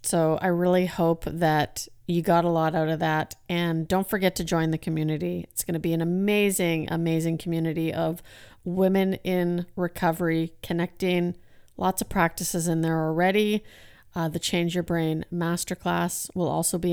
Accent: American